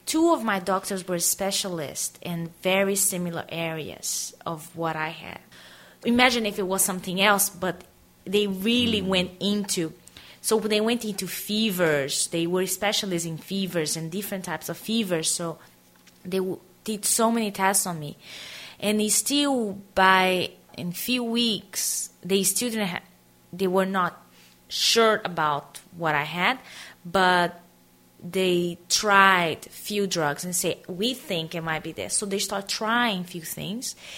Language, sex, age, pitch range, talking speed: English, female, 20-39, 165-205 Hz, 150 wpm